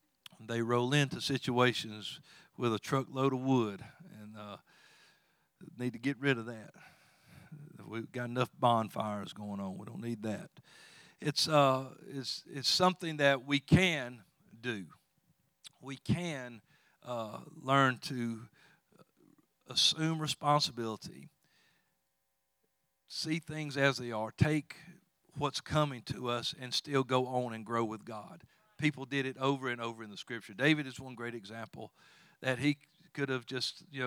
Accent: American